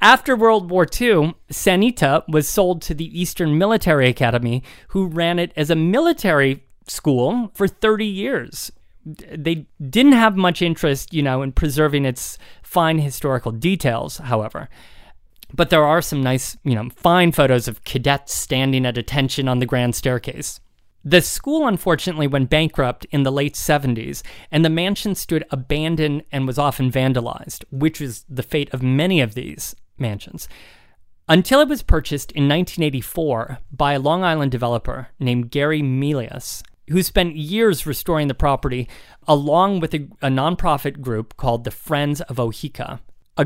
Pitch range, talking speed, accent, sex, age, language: 130-170 Hz, 155 wpm, American, male, 30-49, English